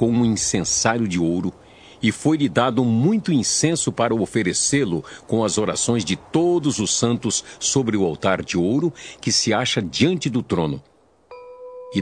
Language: Portuguese